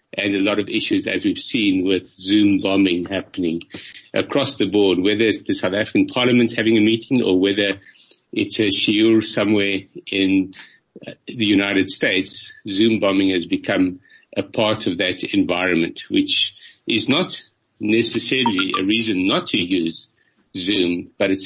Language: English